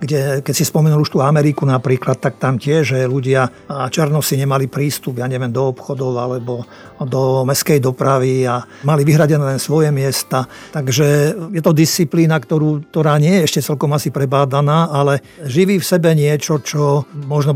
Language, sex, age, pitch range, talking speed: Slovak, male, 50-69, 135-155 Hz, 170 wpm